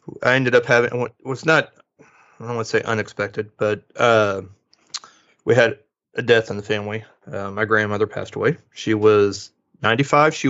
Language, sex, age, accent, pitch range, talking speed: English, male, 30-49, American, 105-115 Hz, 175 wpm